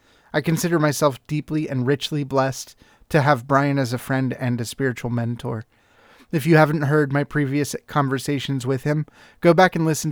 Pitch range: 125-150 Hz